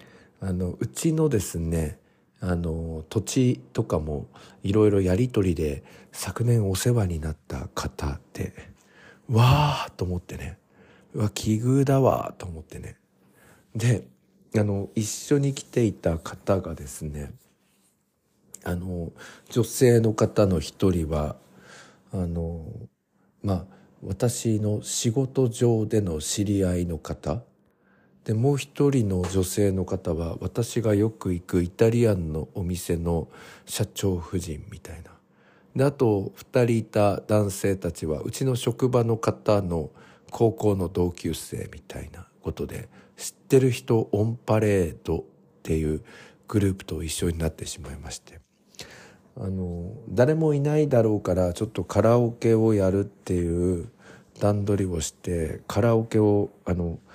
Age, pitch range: 50-69, 90-115 Hz